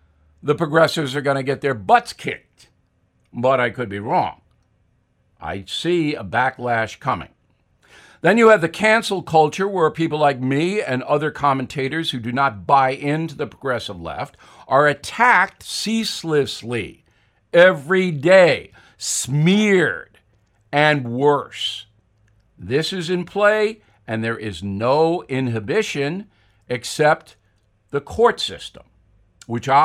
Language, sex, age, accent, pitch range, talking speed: English, male, 60-79, American, 105-170 Hz, 125 wpm